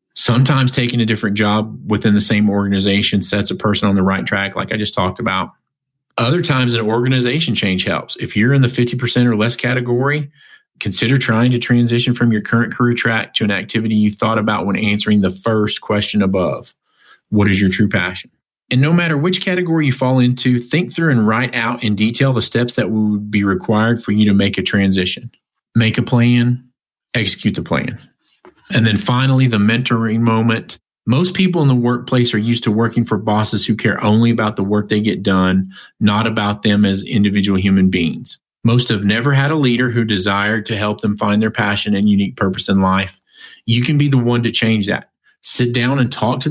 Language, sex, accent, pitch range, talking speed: English, male, American, 105-125 Hz, 205 wpm